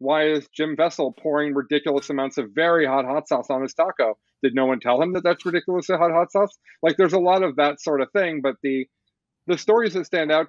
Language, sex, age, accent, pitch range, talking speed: English, male, 40-59, American, 130-170 Hz, 240 wpm